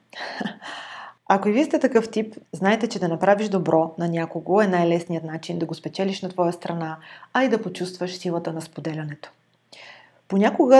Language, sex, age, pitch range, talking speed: Bulgarian, female, 30-49, 170-205 Hz, 165 wpm